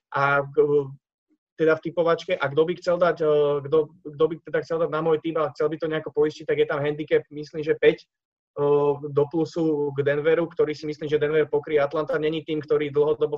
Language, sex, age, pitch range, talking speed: Czech, male, 20-39, 150-165 Hz, 220 wpm